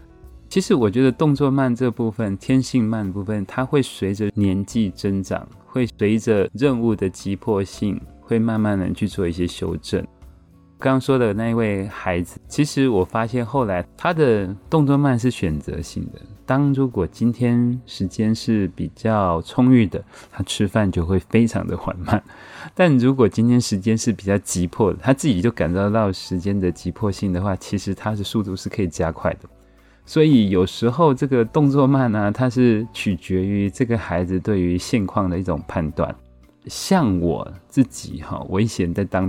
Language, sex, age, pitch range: Chinese, male, 20-39, 90-115 Hz